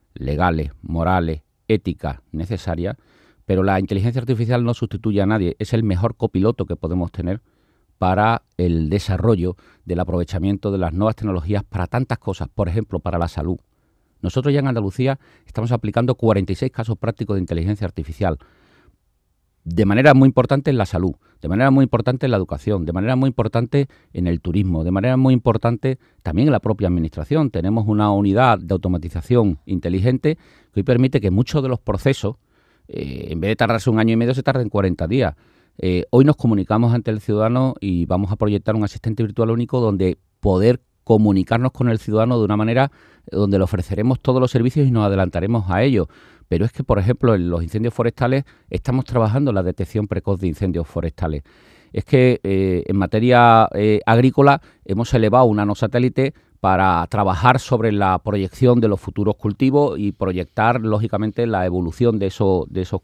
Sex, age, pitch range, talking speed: male, 40-59, 95-120 Hz, 180 wpm